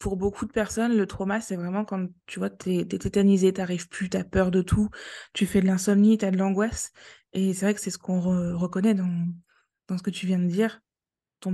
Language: French